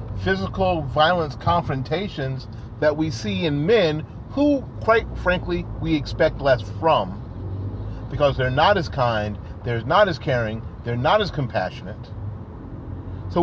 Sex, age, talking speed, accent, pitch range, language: male, 40-59, 130 wpm, American, 110-165 Hz, English